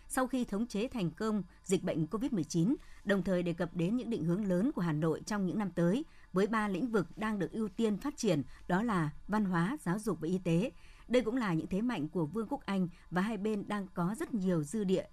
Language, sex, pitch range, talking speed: Vietnamese, male, 170-225 Hz, 250 wpm